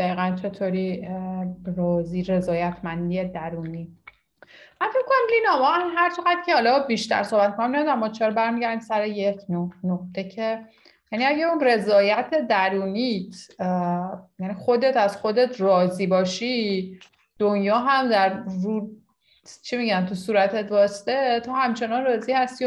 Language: Persian